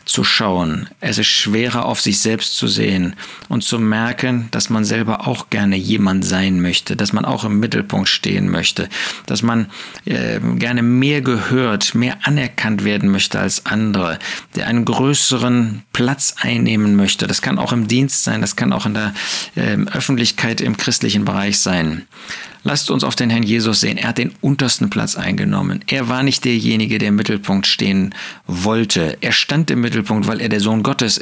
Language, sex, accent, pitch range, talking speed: German, male, German, 100-125 Hz, 180 wpm